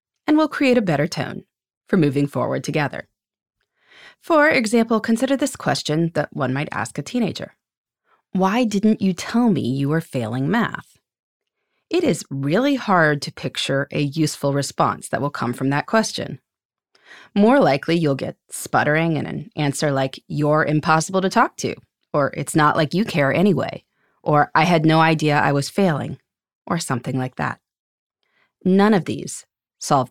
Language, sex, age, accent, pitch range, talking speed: English, female, 30-49, American, 140-205 Hz, 165 wpm